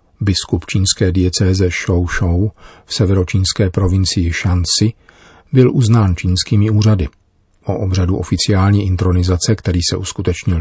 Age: 40-59